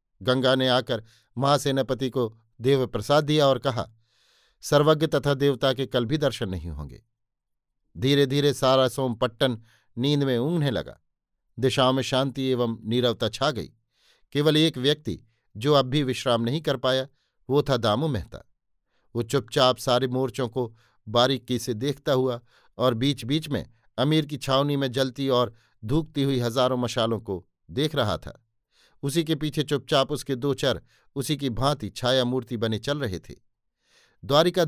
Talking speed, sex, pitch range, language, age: 160 wpm, male, 120-145 Hz, Hindi, 50-69